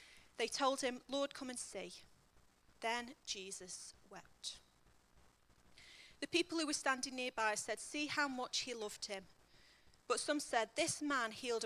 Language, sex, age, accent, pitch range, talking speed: English, female, 30-49, British, 200-275 Hz, 150 wpm